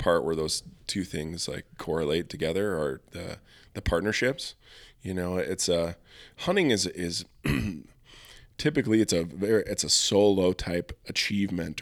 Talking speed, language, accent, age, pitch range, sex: 140 wpm, English, American, 20-39, 85-100 Hz, male